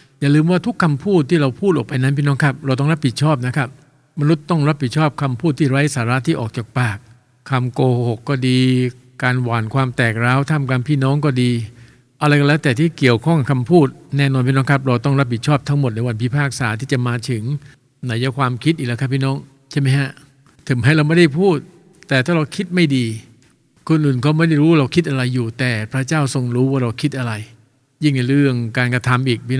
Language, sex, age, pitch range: English, male, 60-79, 125-145 Hz